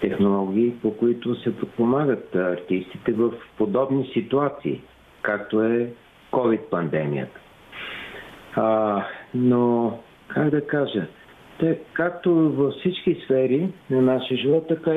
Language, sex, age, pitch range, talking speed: Bulgarian, male, 50-69, 120-155 Hz, 105 wpm